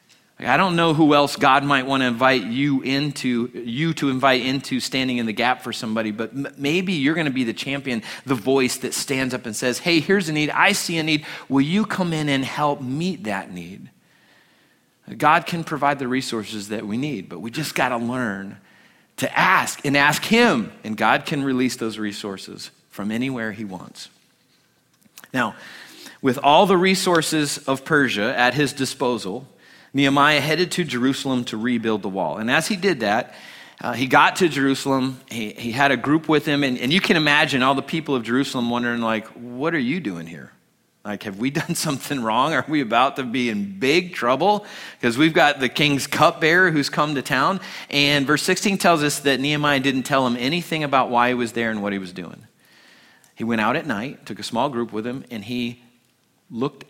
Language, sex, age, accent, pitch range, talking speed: English, male, 30-49, American, 120-150 Hz, 205 wpm